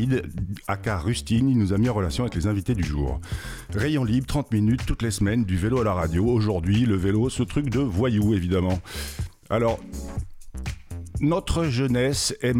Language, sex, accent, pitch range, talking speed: French, male, French, 95-125 Hz, 175 wpm